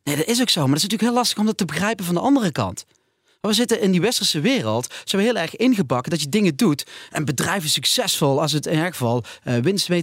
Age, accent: 30-49, Dutch